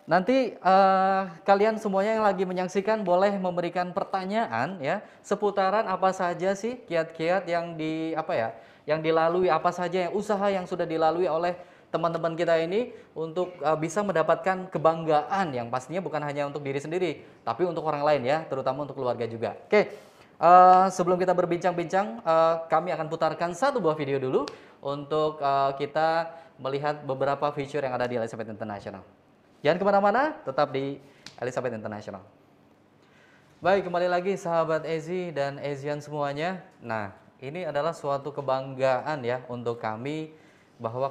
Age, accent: 20-39, native